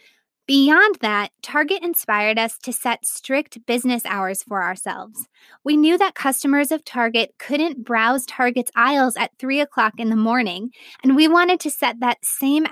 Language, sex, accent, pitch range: English, female, American, 230-280 Hz